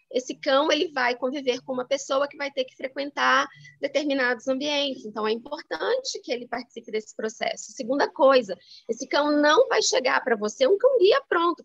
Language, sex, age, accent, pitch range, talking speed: Portuguese, female, 20-39, Brazilian, 230-300 Hz, 175 wpm